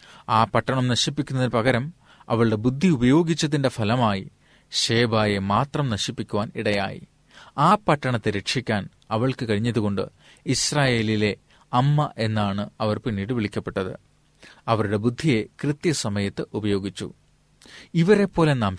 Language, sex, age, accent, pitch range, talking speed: Malayalam, male, 30-49, native, 105-135 Hz, 95 wpm